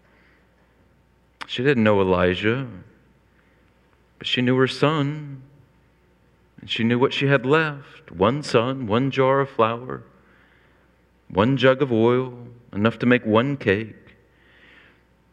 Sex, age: male, 40-59